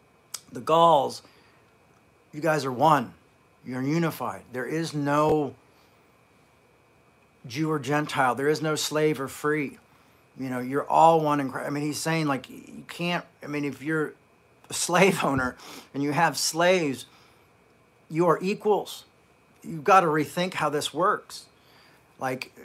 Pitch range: 130-155 Hz